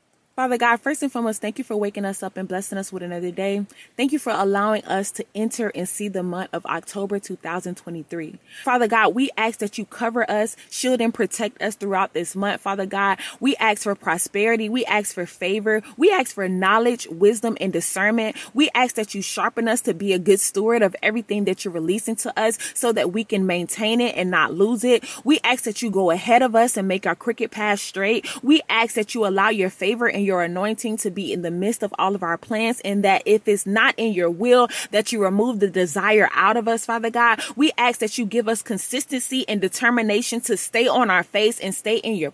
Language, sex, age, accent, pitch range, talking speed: English, female, 20-39, American, 195-240 Hz, 230 wpm